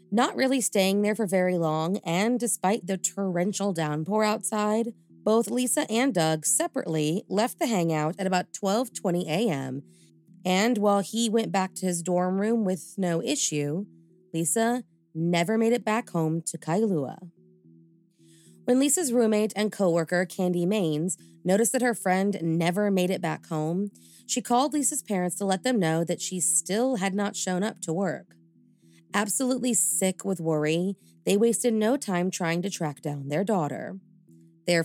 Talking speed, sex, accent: 160 wpm, female, American